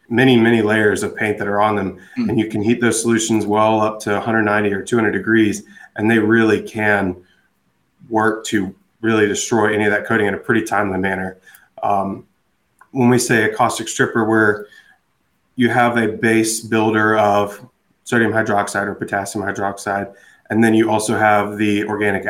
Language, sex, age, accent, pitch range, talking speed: English, male, 20-39, American, 100-110 Hz, 175 wpm